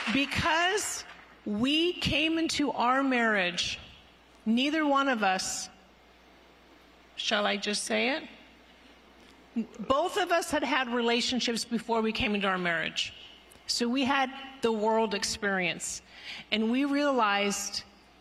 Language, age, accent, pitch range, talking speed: English, 50-69, American, 210-270 Hz, 120 wpm